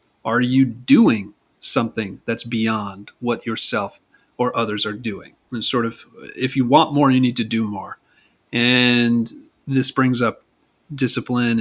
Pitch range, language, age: 115-140 Hz, English, 30-49